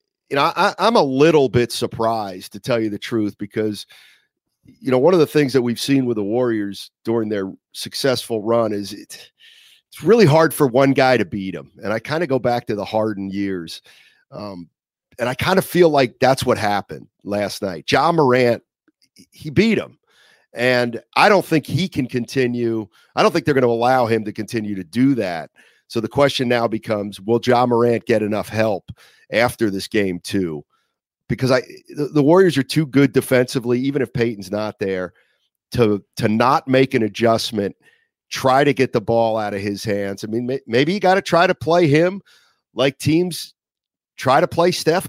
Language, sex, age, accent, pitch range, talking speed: English, male, 40-59, American, 105-145 Hz, 195 wpm